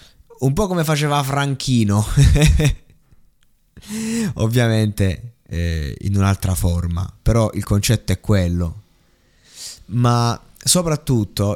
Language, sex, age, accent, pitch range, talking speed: Italian, male, 20-39, native, 100-125 Hz, 90 wpm